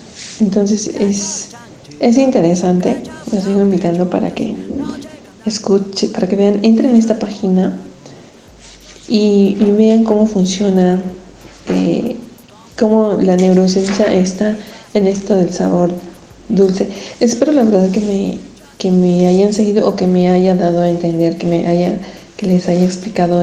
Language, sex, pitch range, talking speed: Spanish, female, 180-215 Hz, 140 wpm